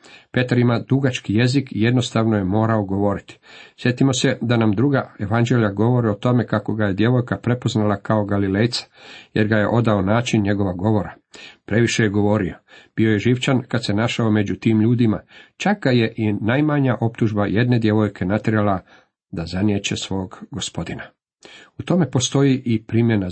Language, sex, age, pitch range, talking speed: Croatian, male, 50-69, 105-130 Hz, 155 wpm